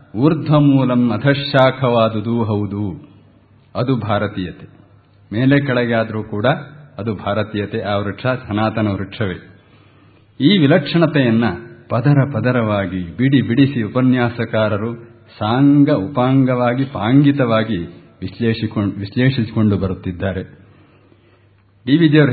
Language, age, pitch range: Kannada, 50-69, 105-135 Hz